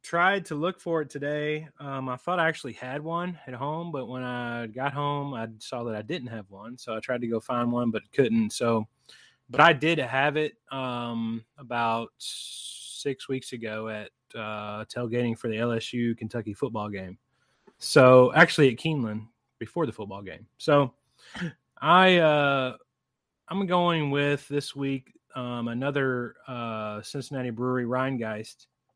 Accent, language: American, English